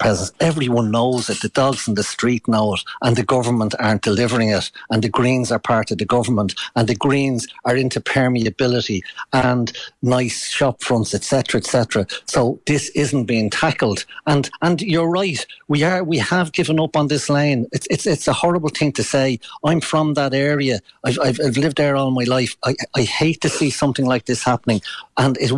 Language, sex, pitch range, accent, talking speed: English, male, 115-145 Hz, Irish, 200 wpm